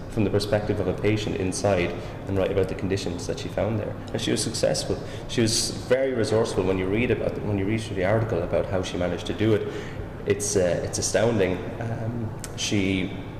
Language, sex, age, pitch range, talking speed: English, male, 20-39, 95-105 Hz, 215 wpm